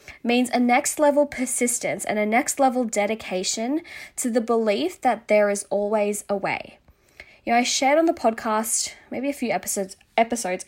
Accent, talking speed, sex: Australian, 175 wpm, female